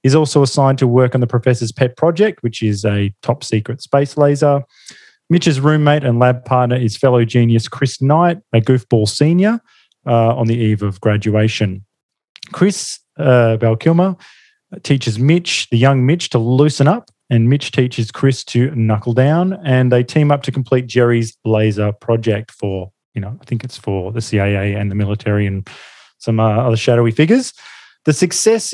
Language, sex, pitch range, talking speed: English, male, 115-145 Hz, 170 wpm